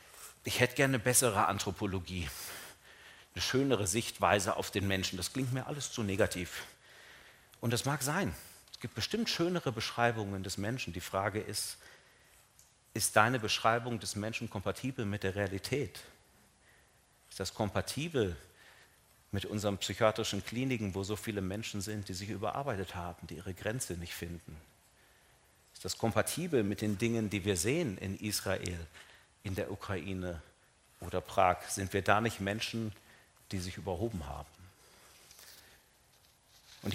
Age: 40-59